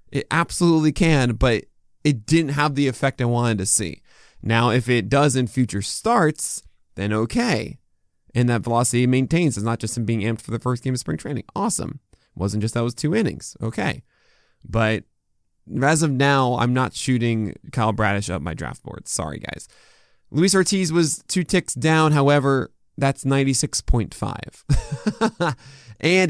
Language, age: English, 20-39